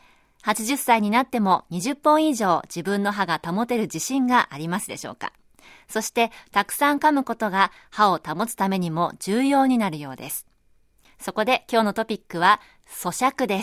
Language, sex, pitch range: Japanese, female, 175-255 Hz